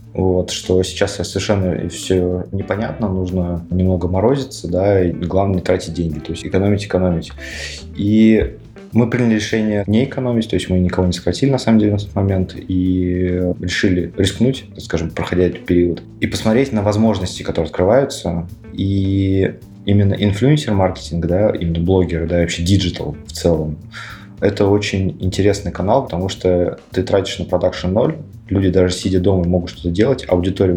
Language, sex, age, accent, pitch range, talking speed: Russian, male, 20-39, native, 90-105 Hz, 160 wpm